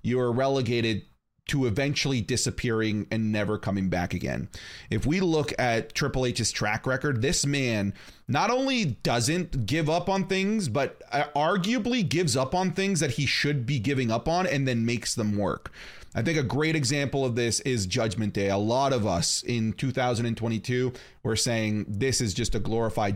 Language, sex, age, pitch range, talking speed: English, male, 30-49, 110-135 Hz, 180 wpm